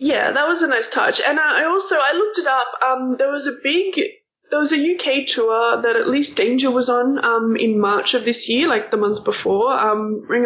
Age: 20-39